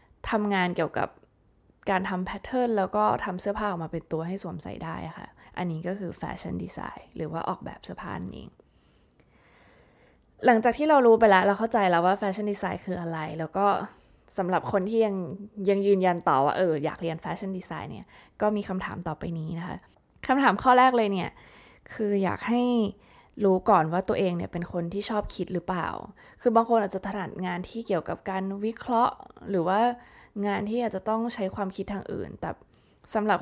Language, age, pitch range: Thai, 20-39, 185-225 Hz